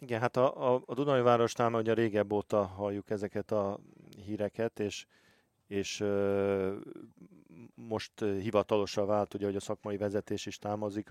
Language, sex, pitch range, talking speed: Hungarian, male, 95-110 Hz, 135 wpm